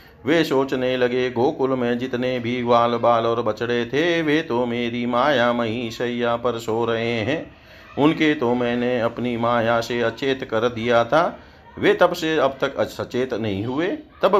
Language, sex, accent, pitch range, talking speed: Hindi, male, native, 115-135 Hz, 170 wpm